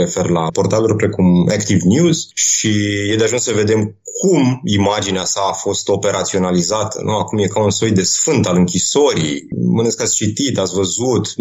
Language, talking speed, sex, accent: Romanian, 175 wpm, male, native